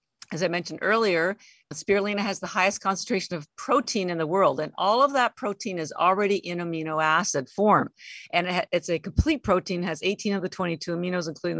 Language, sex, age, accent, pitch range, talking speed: English, female, 50-69, American, 170-220 Hz, 190 wpm